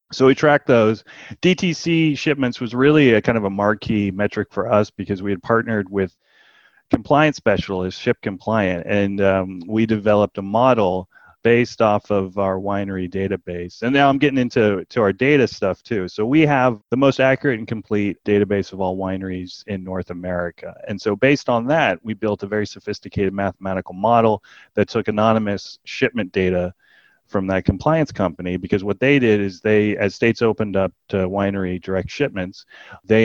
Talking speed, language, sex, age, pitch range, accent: 175 wpm, English, male, 30-49, 95-115 Hz, American